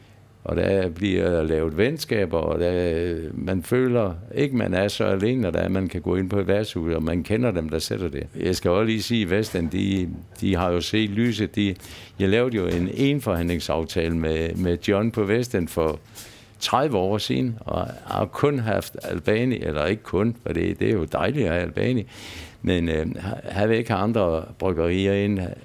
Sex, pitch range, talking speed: male, 90-120 Hz, 195 wpm